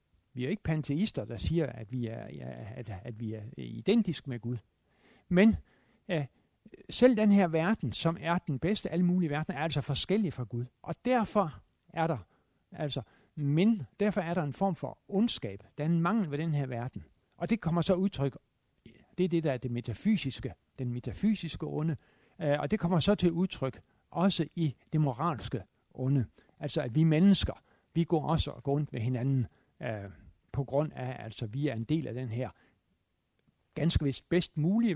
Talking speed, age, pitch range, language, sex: 190 wpm, 60-79, 120-175 Hz, Danish, male